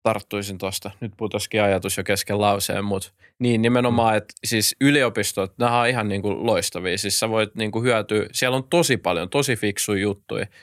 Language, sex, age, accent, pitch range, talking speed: Finnish, male, 20-39, native, 100-115 Hz, 175 wpm